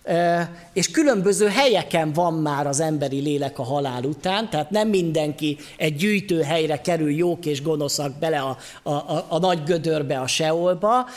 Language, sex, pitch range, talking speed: Hungarian, male, 145-185 Hz, 165 wpm